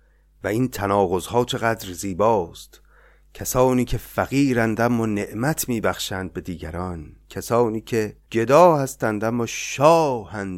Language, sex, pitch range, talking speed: Persian, male, 100-165 Hz, 120 wpm